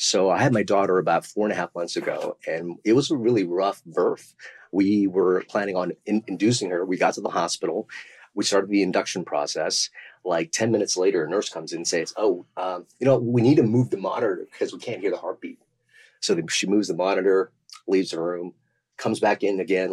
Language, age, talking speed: English, 30-49, 225 wpm